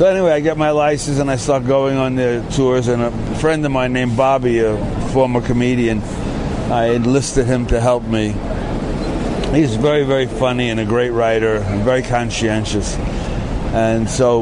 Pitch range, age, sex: 110-130 Hz, 60-79, male